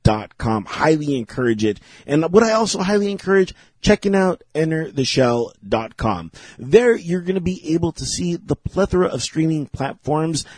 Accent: American